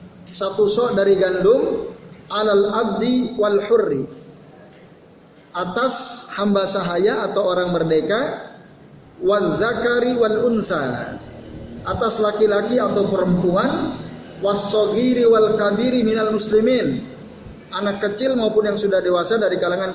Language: Indonesian